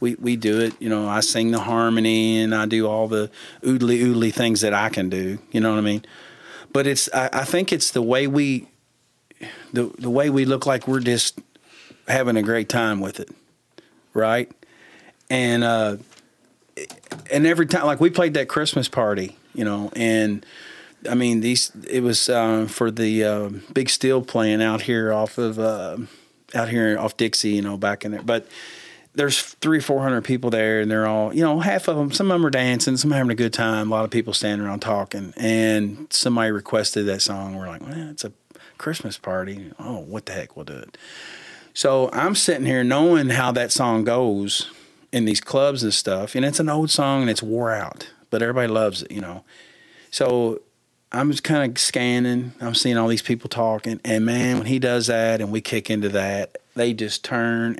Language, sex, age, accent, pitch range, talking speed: English, male, 40-59, American, 110-130 Hz, 205 wpm